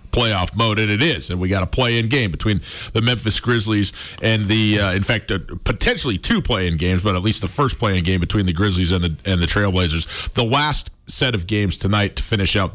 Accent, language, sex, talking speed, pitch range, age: American, English, male, 230 wpm, 90-120 Hz, 40-59